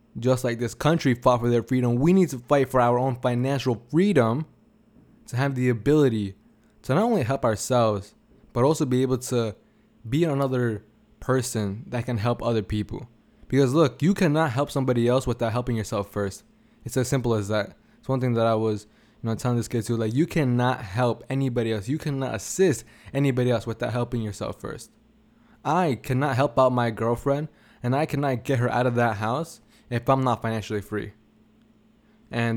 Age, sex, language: 20-39, male, English